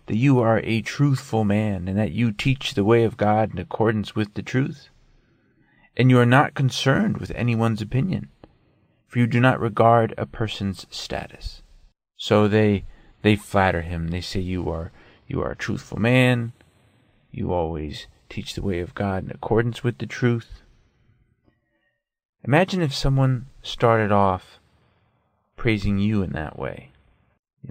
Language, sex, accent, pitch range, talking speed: English, male, American, 100-125 Hz, 155 wpm